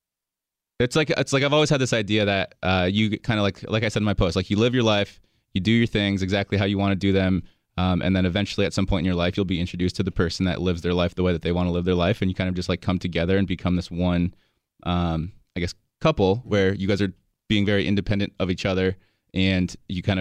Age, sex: 20-39, male